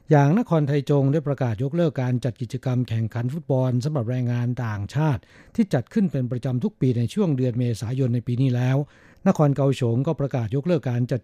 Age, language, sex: 60-79, Thai, male